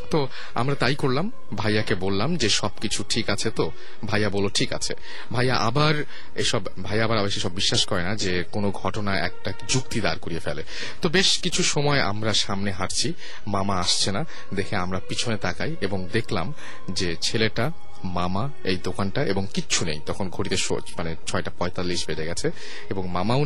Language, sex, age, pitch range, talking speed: Bengali, male, 30-49, 90-115 Hz, 170 wpm